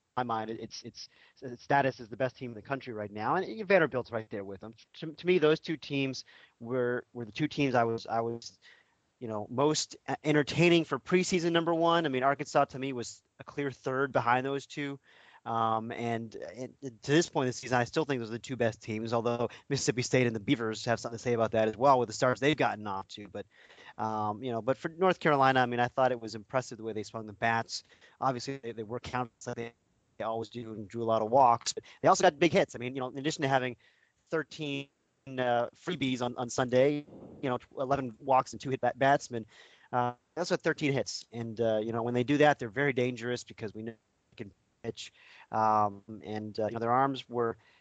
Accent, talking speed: American, 240 wpm